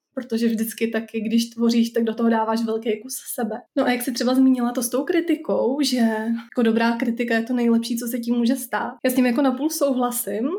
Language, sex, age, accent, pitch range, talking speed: Czech, female, 20-39, native, 225-245 Hz, 225 wpm